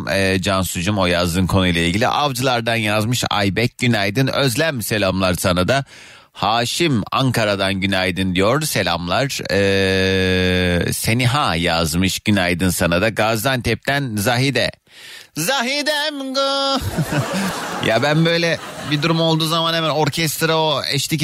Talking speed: 115 wpm